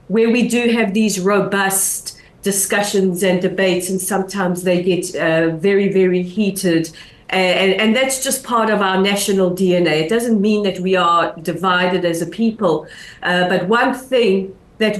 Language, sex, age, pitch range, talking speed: English, female, 40-59, 185-225 Hz, 165 wpm